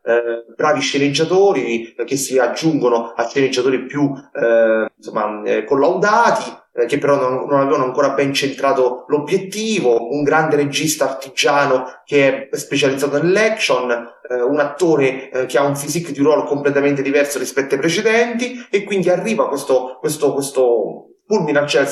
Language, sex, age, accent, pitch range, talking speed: Italian, male, 30-49, native, 130-170 Hz, 150 wpm